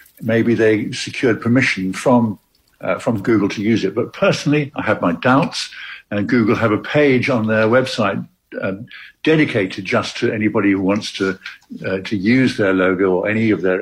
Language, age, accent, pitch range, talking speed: English, 60-79, British, 95-120 Hz, 180 wpm